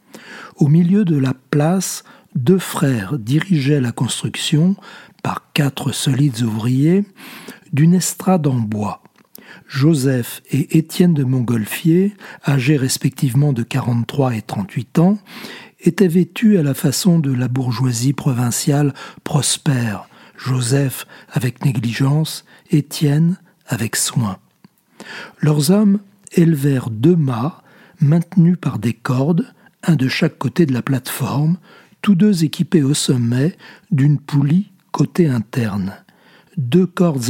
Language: French